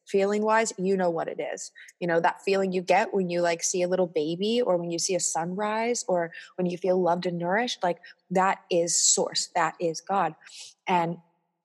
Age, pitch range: 20-39, 180-230 Hz